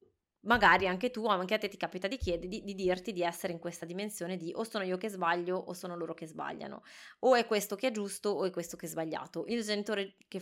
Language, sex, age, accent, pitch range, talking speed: Italian, female, 20-39, native, 175-235 Hz, 250 wpm